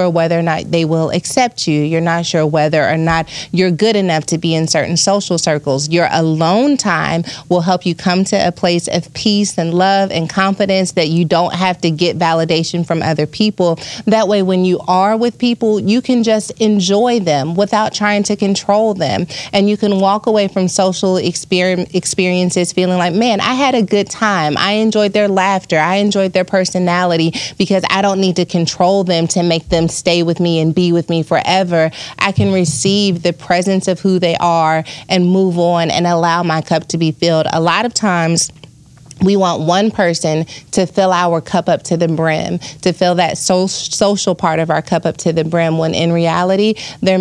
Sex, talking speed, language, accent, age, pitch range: female, 200 wpm, English, American, 30-49, 160-190 Hz